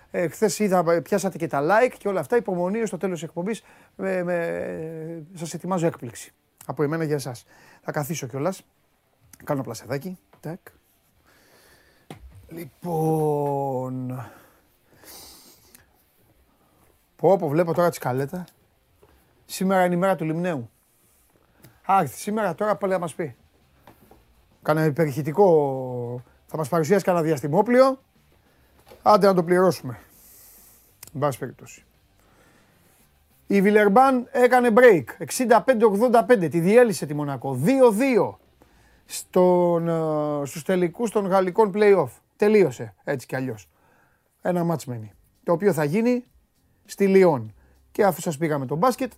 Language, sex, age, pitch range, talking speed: Greek, male, 30-49, 140-195 Hz, 120 wpm